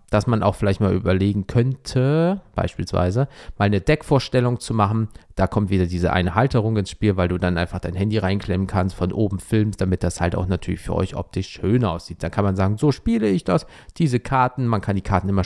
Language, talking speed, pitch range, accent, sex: German, 220 wpm, 95-125 Hz, German, male